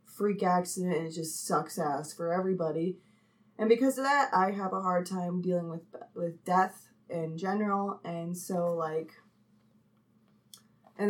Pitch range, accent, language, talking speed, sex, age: 175-195 Hz, American, English, 150 wpm, female, 20-39